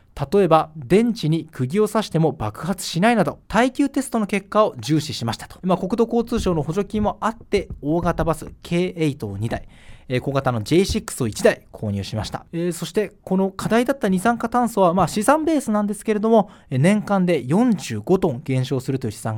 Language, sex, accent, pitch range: Japanese, male, native, 140-220 Hz